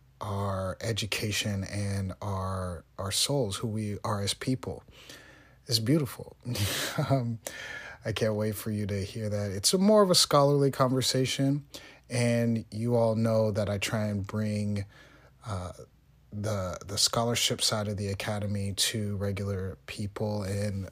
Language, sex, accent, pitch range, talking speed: English, male, American, 105-130 Hz, 145 wpm